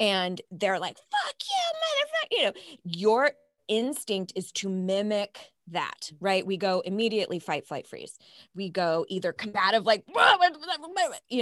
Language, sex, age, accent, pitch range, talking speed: English, female, 20-39, American, 170-220 Hz, 150 wpm